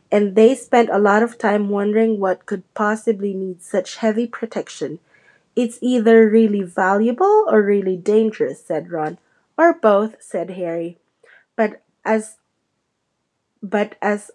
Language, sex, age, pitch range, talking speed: English, female, 20-39, 190-230 Hz, 135 wpm